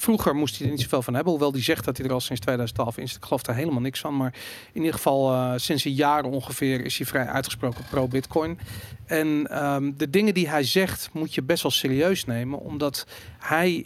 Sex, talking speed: male, 230 wpm